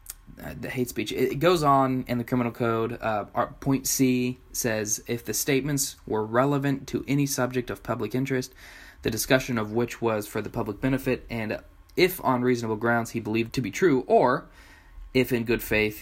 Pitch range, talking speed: 100-130 Hz, 185 wpm